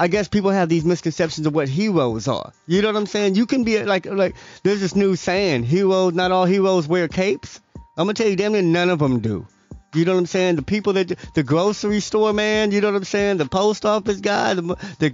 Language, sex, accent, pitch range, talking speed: English, male, American, 145-195 Hz, 255 wpm